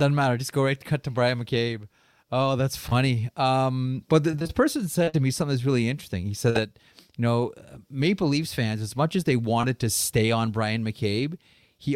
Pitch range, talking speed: 105-130 Hz, 215 wpm